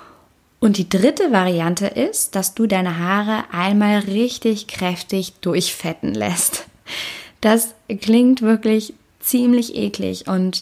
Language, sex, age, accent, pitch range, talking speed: German, female, 20-39, German, 175-215 Hz, 115 wpm